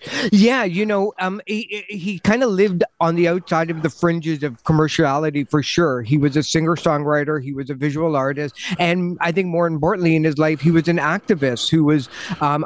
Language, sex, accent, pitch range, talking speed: English, male, American, 150-180 Hz, 205 wpm